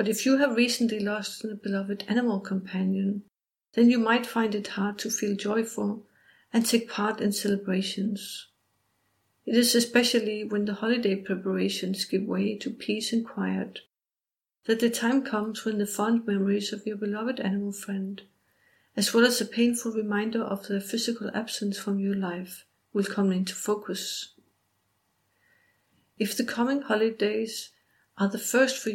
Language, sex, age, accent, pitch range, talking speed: English, female, 60-79, Danish, 200-230 Hz, 155 wpm